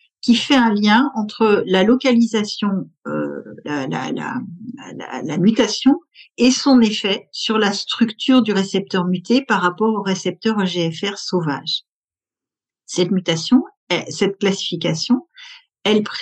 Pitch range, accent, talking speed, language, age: 180-240 Hz, French, 125 wpm, French, 50-69